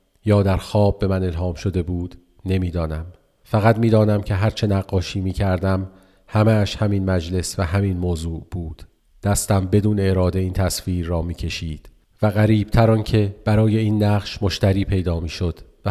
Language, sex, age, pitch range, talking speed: Persian, male, 40-59, 90-105 Hz, 160 wpm